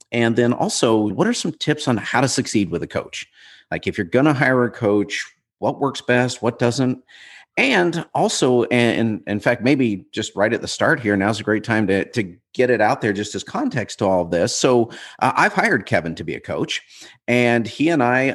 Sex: male